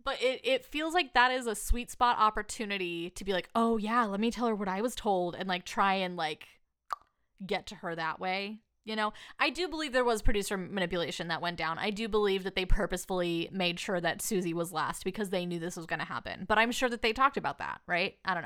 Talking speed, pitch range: 250 wpm, 185-240 Hz